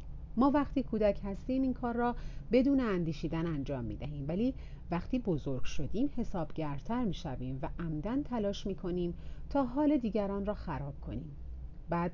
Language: Persian